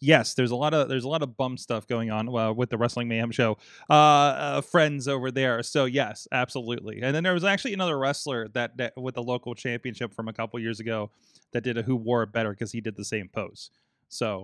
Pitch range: 120-155 Hz